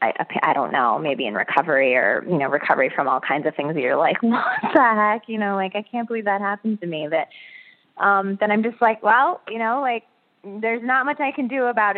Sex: female